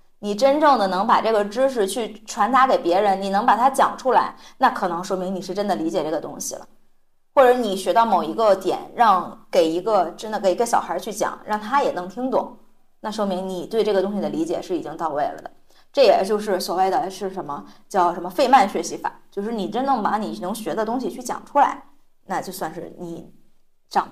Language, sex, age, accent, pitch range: Chinese, female, 20-39, native, 200-270 Hz